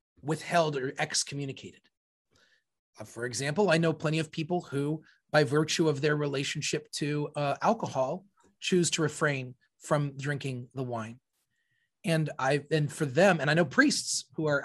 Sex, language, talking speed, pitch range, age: male, English, 155 wpm, 140-195 Hz, 30-49